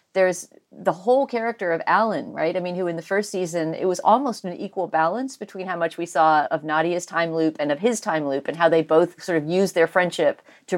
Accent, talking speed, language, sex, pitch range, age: American, 245 wpm, English, female, 165-220 Hz, 40-59